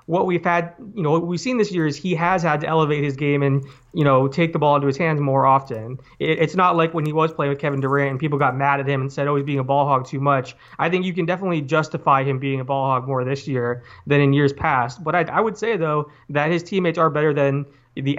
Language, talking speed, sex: English, 285 wpm, male